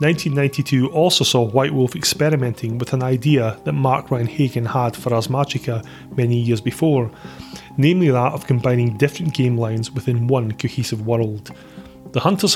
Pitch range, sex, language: 115-155 Hz, male, English